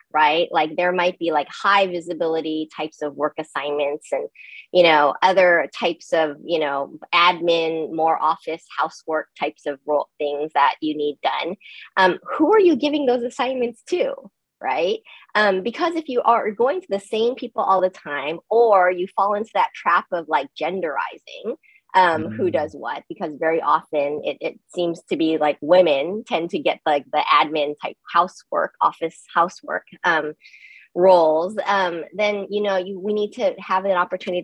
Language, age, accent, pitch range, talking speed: English, 20-39, American, 155-200 Hz, 175 wpm